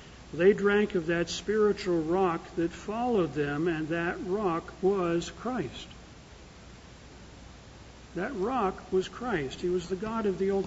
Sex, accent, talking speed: male, American, 140 wpm